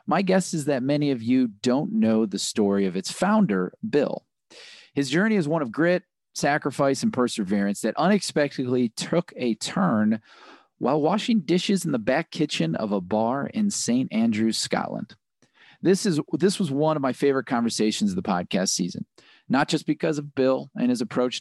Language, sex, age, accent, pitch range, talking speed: English, male, 40-59, American, 125-195 Hz, 180 wpm